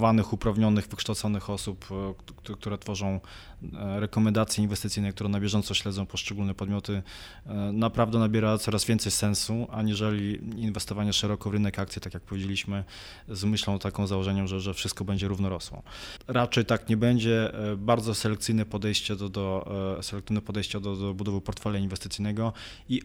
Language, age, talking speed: Polish, 20-39, 140 wpm